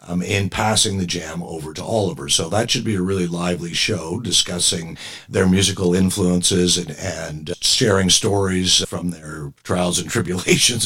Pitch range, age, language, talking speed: 90-115 Hz, 50-69, English, 160 wpm